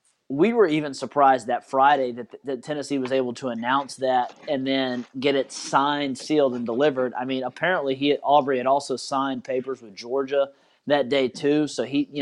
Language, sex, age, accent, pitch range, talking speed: English, male, 30-49, American, 130-145 Hz, 190 wpm